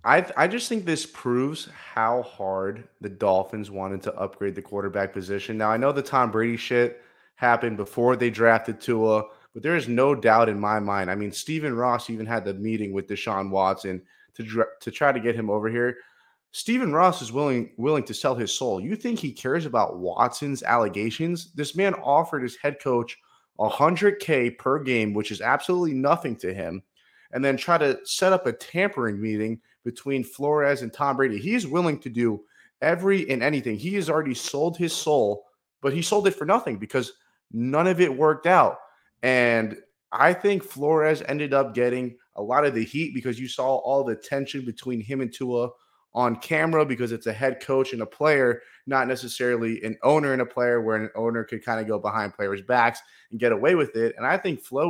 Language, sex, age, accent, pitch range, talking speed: English, male, 30-49, American, 110-145 Hz, 200 wpm